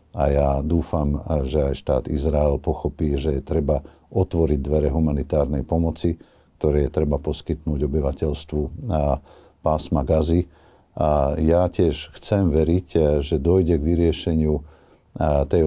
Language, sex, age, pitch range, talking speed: Slovak, male, 50-69, 70-80 Hz, 125 wpm